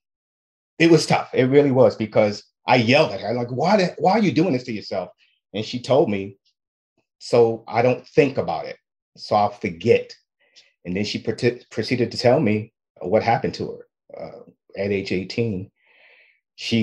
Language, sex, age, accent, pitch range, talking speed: English, male, 30-49, American, 100-125 Hz, 175 wpm